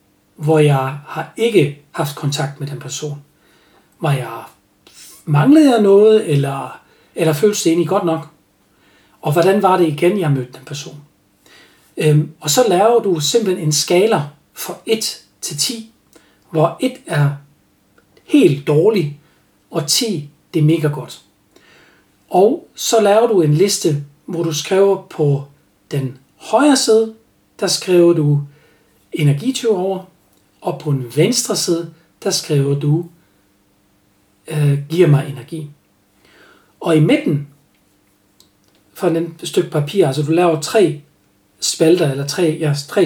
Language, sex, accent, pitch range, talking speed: Danish, male, native, 145-180 Hz, 135 wpm